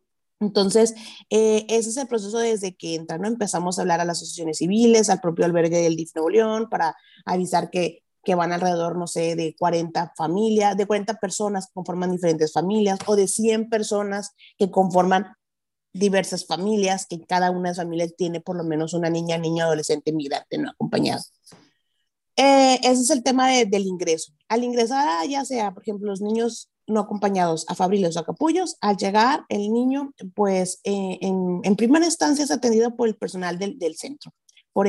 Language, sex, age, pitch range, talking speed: Spanish, female, 30-49, 175-220 Hz, 185 wpm